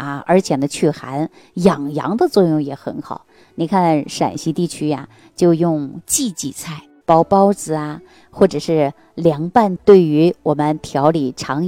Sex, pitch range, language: female, 150-205 Hz, Chinese